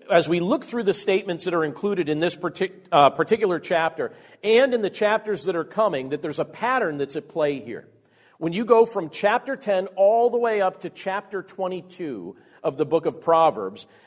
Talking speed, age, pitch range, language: 200 wpm, 50-69, 160-210 Hz, English